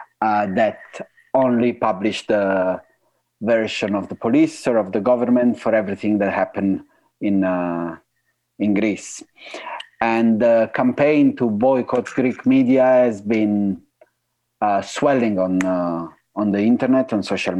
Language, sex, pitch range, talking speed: English, male, 95-120 Hz, 135 wpm